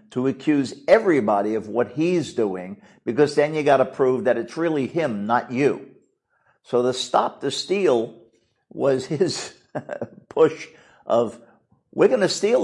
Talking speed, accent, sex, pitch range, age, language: 150 wpm, American, male, 125-150 Hz, 50-69, English